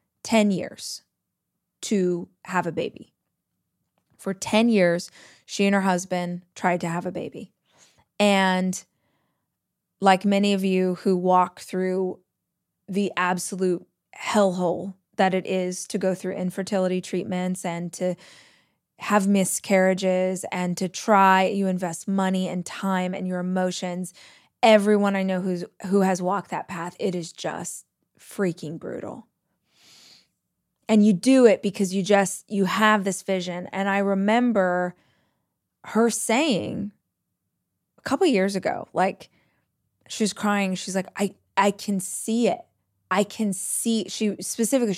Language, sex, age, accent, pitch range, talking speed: English, female, 20-39, American, 185-205 Hz, 135 wpm